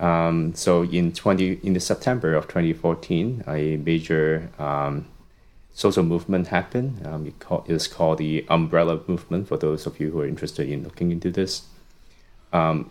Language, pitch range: English, 80-95 Hz